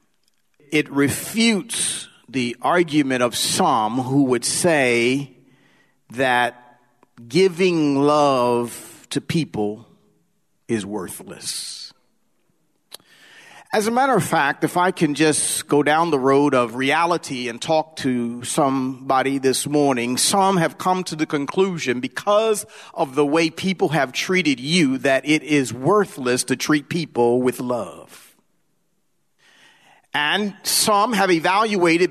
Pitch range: 135-190 Hz